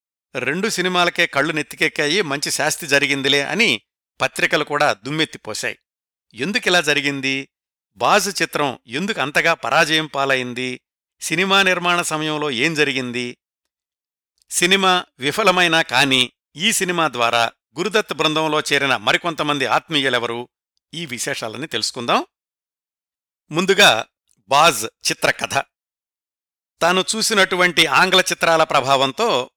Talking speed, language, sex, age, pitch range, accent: 95 wpm, Telugu, male, 50-69, 140-180 Hz, native